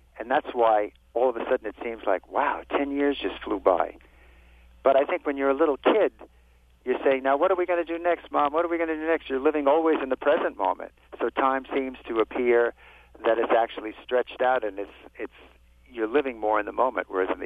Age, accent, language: 50-69, American, English